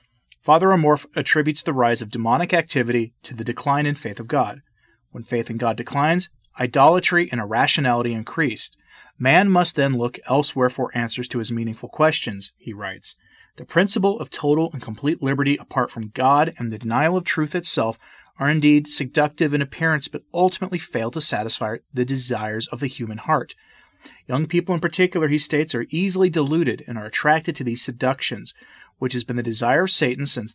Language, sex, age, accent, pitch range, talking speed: English, male, 30-49, American, 120-155 Hz, 180 wpm